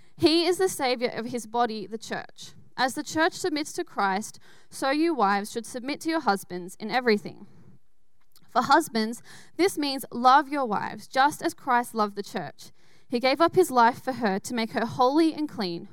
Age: 10-29